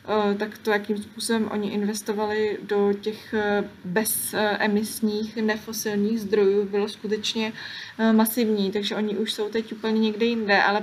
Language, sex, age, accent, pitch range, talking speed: Czech, female, 20-39, native, 210-230 Hz, 125 wpm